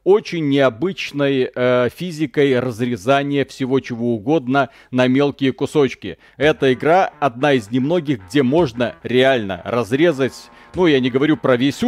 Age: 40-59